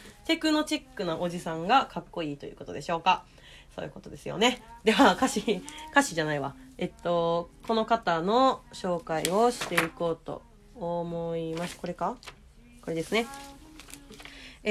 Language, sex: Japanese, female